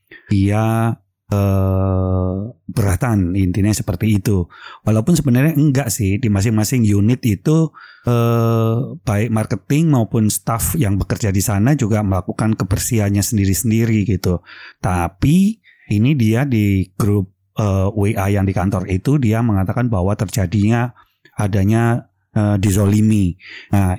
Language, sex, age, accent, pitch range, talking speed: Indonesian, male, 30-49, native, 100-125 Hz, 120 wpm